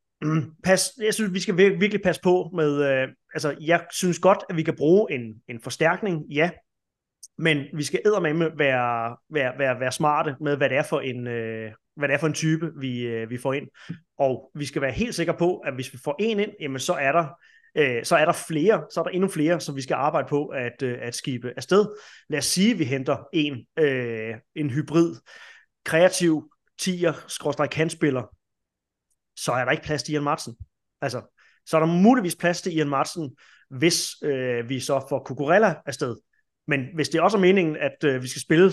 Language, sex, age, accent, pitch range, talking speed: Danish, male, 30-49, native, 135-170 Hz, 210 wpm